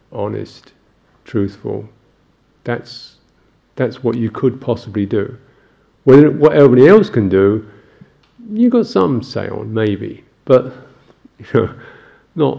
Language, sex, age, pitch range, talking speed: English, male, 50-69, 110-130 Hz, 115 wpm